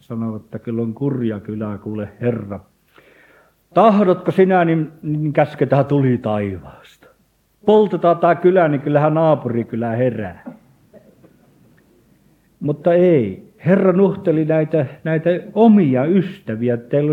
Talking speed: 110 wpm